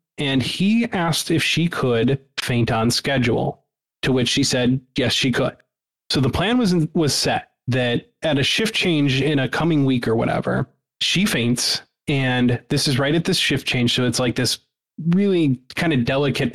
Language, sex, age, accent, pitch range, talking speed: English, male, 20-39, American, 125-160 Hz, 185 wpm